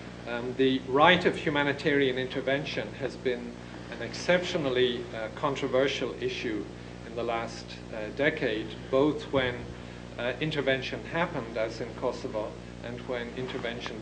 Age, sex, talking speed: 50-69, male, 125 wpm